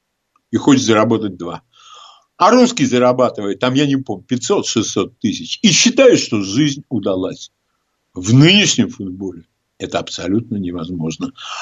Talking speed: 120 wpm